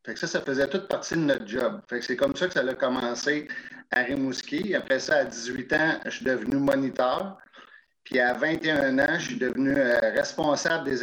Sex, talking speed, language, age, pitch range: male, 210 wpm, French, 50-69, 130-185 Hz